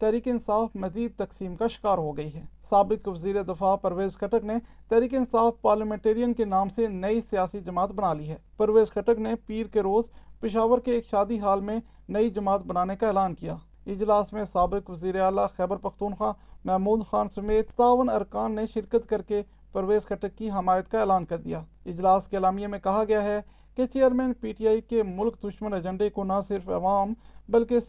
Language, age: Urdu, 40-59